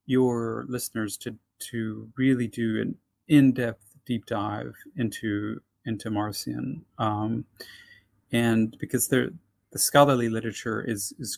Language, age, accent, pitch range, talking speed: English, 30-49, American, 110-140 Hz, 110 wpm